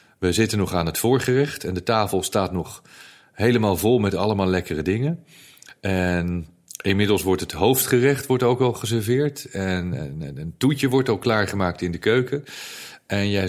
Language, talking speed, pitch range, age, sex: Dutch, 160 wpm, 95-130 Hz, 40-59, male